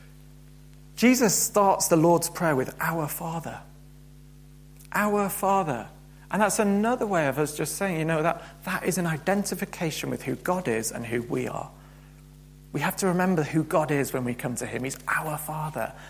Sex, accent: male, British